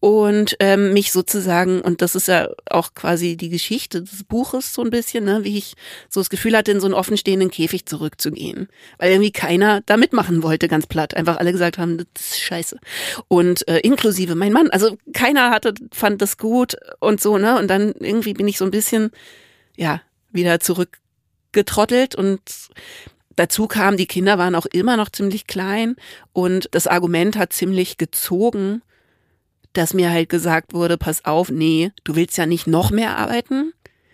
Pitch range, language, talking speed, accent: 170-215 Hz, German, 180 wpm, German